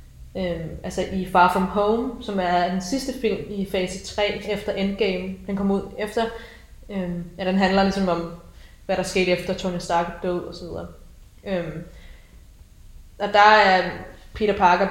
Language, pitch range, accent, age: Danish, 170-210 Hz, native, 20-39